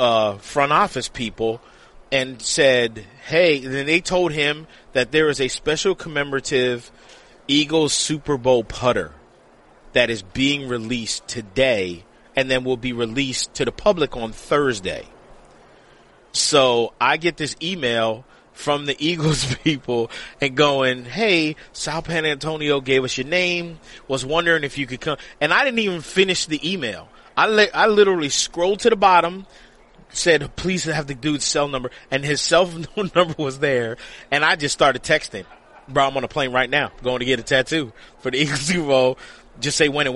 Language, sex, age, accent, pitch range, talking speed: English, male, 30-49, American, 125-155 Hz, 175 wpm